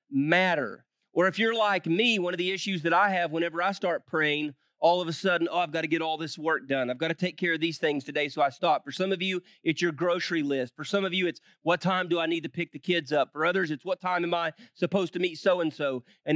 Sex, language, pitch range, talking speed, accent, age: male, English, 165-220 Hz, 285 wpm, American, 30-49